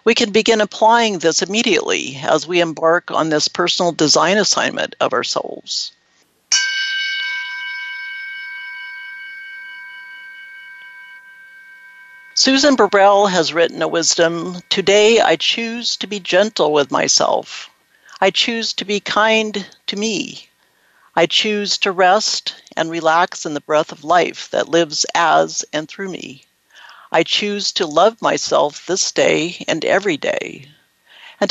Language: English